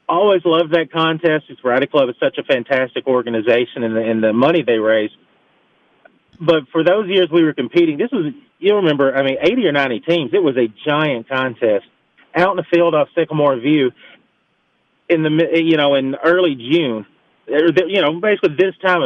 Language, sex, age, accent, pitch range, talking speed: English, male, 30-49, American, 135-170 Hz, 185 wpm